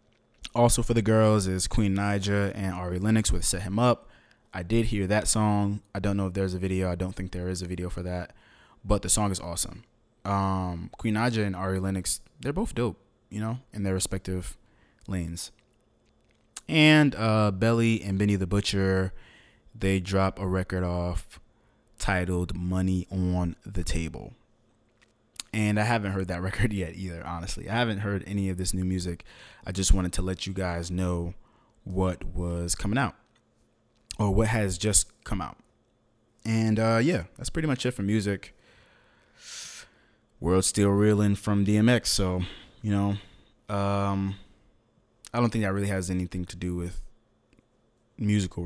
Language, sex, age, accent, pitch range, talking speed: English, male, 20-39, American, 90-110 Hz, 170 wpm